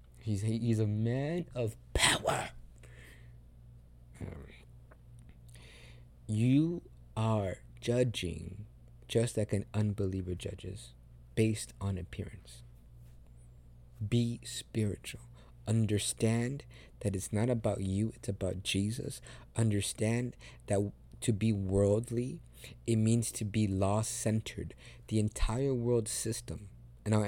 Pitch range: 80-120 Hz